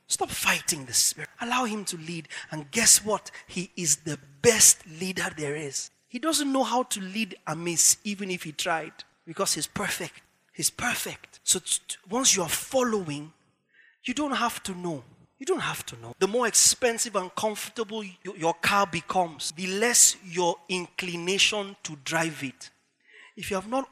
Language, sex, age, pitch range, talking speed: English, male, 30-49, 175-235 Hz, 170 wpm